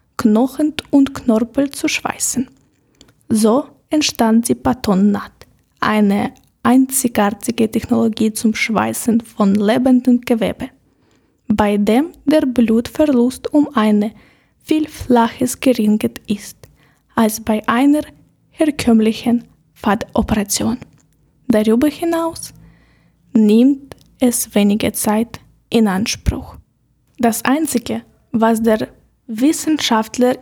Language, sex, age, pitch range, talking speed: German, female, 20-39, 220-275 Hz, 90 wpm